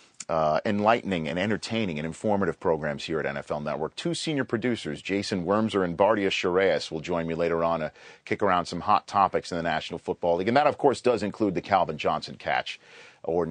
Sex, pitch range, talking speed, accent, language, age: male, 90-115 Hz, 205 wpm, American, English, 40-59